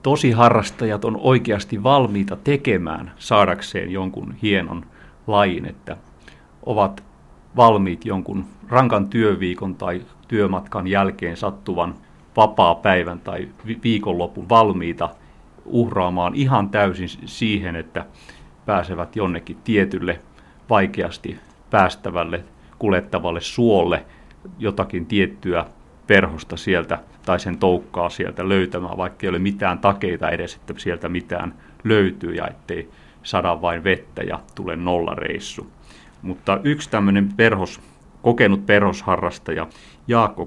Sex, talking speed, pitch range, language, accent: male, 105 wpm, 85-105 Hz, Finnish, native